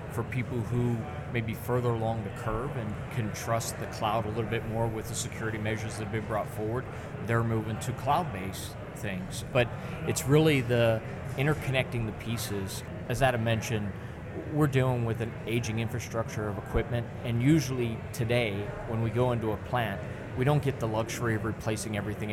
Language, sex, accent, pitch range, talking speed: English, male, American, 110-125 Hz, 180 wpm